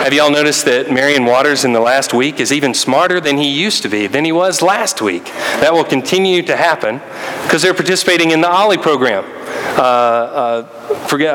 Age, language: 40-59, English